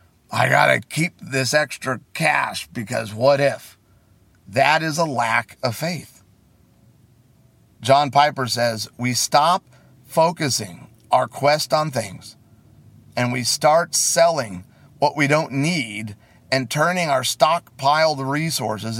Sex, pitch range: male, 115-145 Hz